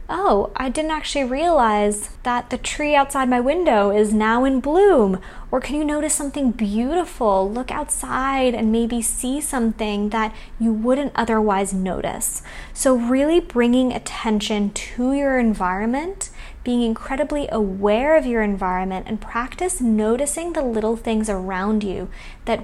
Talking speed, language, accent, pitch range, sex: 145 wpm, English, American, 210-260 Hz, female